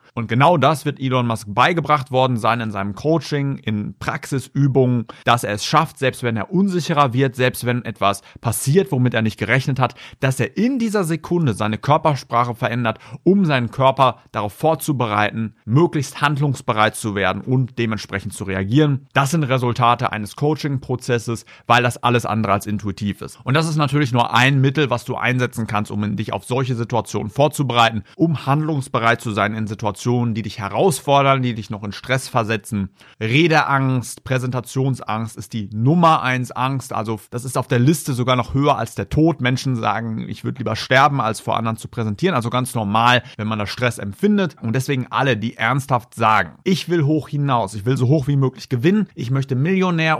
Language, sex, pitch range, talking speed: German, male, 115-140 Hz, 185 wpm